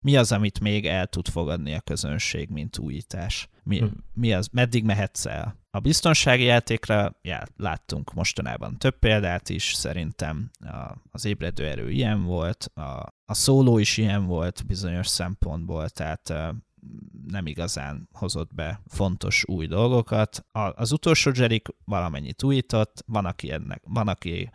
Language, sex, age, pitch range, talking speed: Hungarian, male, 30-49, 90-110 Hz, 140 wpm